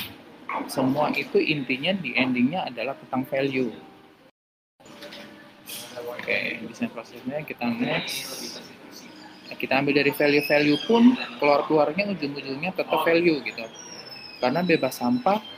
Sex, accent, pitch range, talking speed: male, native, 120-150 Hz, 110 wpm